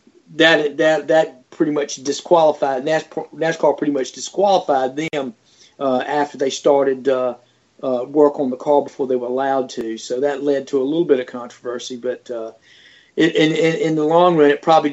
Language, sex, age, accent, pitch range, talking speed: English, male, 40-59, American, 135-160 Hz, 185 wpm